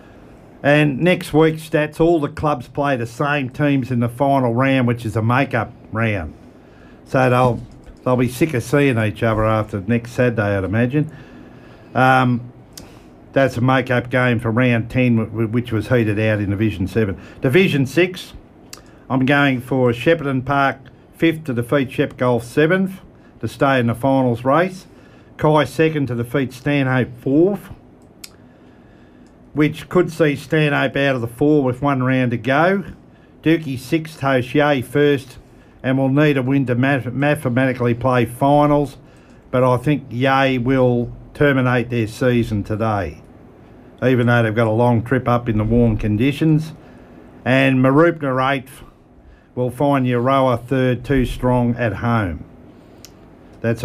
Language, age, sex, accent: English, 50-69, male, Australian